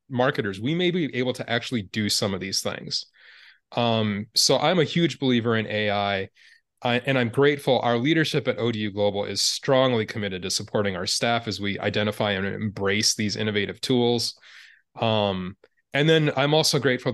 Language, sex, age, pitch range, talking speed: English, male, 20-39, 105-130 Hz, 170 wpm